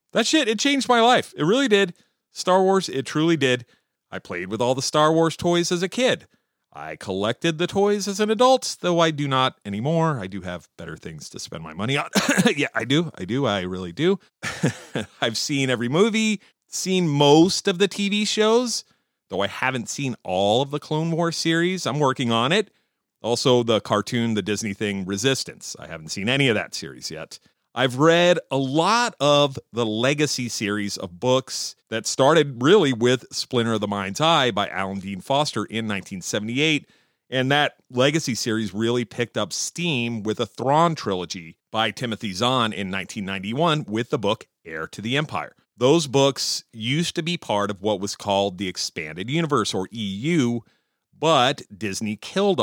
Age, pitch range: 40-59, 110-170 Hz